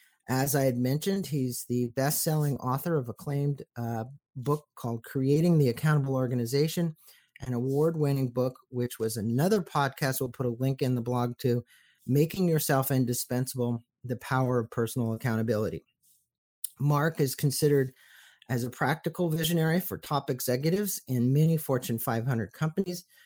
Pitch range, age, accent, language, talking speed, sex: 120-145 Hz, 40-59, American, English, 140 wpm, male